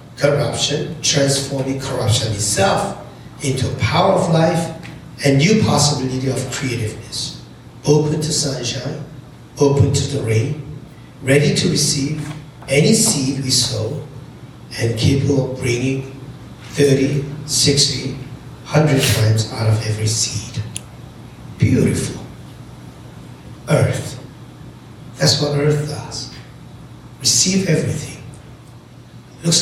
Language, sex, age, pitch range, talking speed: English, male, 60-79, 125-145 Hz, 100 wpm